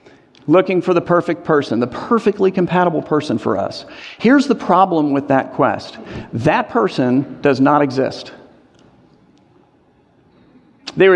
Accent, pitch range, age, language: American, 160-240 Hz, 50-69, English